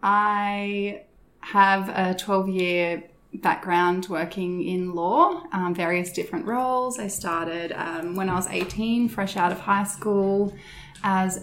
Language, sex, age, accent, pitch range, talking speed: English, female, 20-39, Australian, 175-205 Hz, 130 wpm